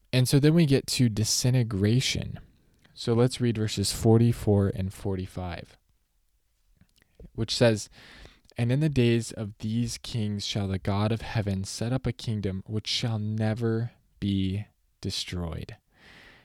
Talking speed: 135 wpm